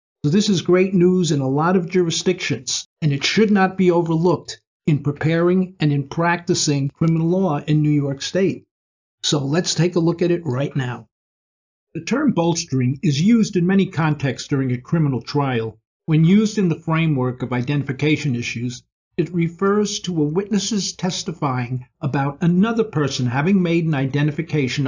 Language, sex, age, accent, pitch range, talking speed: English, male, 50-69, American, 130-175 Hz, 165 wpm